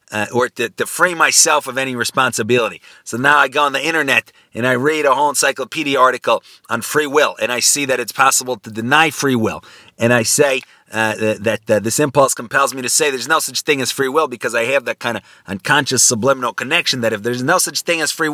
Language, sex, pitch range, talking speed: English, male, 110-135 Hz, 235 wpm